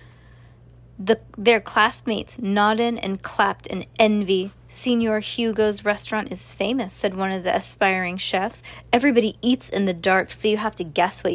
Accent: American